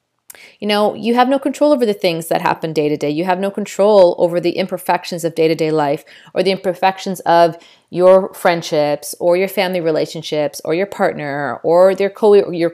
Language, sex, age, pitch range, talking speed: English, female, 40-59, 170-220 Hz, 200 wpm